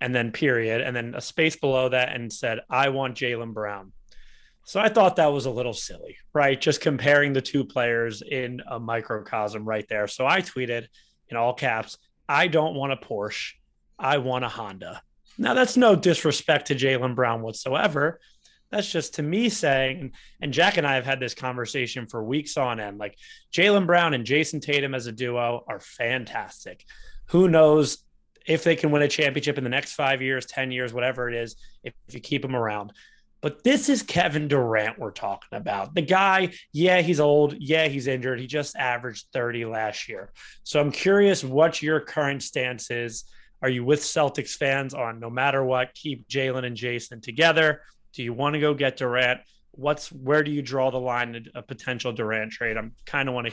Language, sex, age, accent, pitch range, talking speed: English, male, 20-39, American, 120-150 Hz, 195 wpm